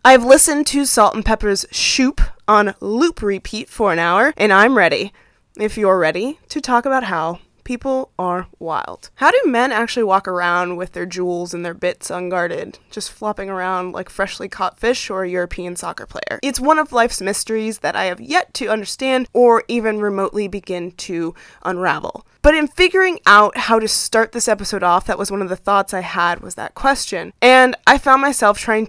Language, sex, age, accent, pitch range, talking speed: English, female, 20-39, American, 190-255 Hz, 195 wpm